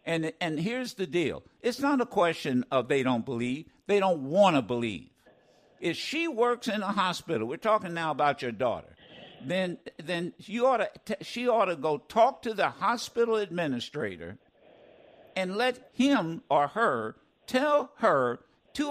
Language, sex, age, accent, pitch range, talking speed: English, male, 60-79, American, 160-245 Hz, 165 wpm